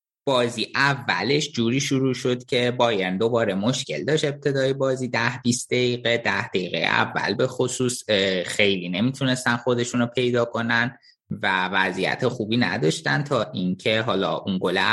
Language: Persian